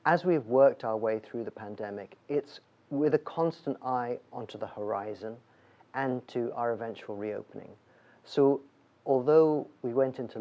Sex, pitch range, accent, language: male, 110-135 Hz, British, English